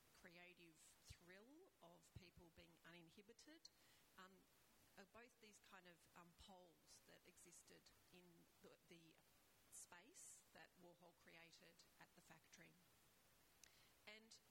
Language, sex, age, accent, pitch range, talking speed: English, female, 40-59, Australian, 175-210 Hz, 110 wpm